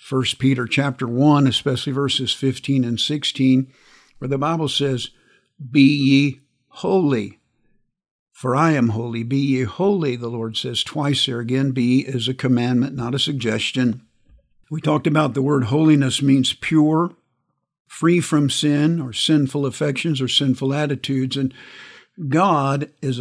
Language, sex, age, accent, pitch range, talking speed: English, male, 50-69, American, 125-150 Hz, 145 wpm